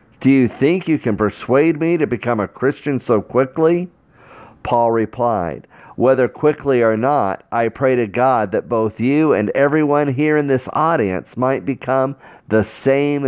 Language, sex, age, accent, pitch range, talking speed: English, male, 50-69, American, 100-130 Hz, 165 wpm